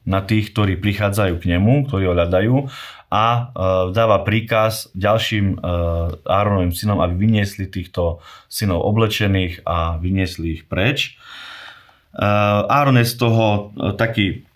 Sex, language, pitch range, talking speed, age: male, Slovak, 90-110 Hz, 130 wpm, 30-49